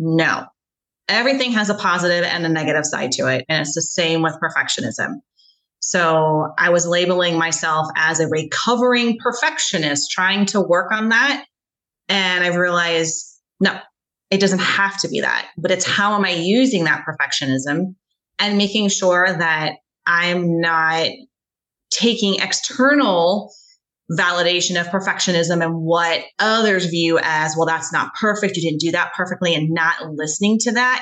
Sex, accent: female, American